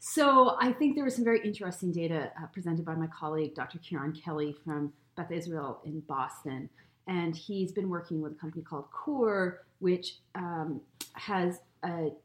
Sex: female